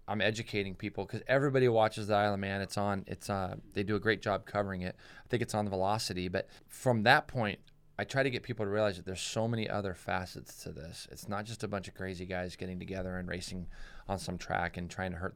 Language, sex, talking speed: English, male, 255 wpm